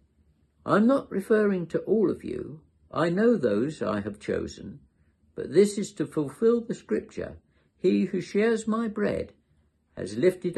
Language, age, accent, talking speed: English, 60-79, British, 155 wpm